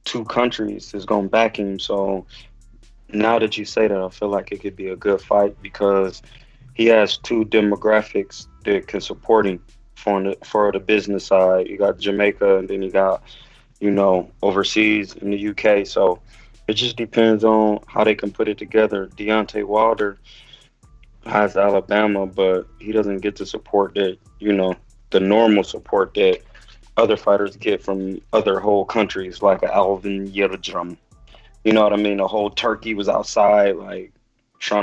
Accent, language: American, English